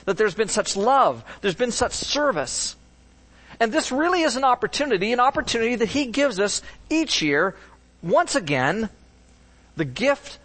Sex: male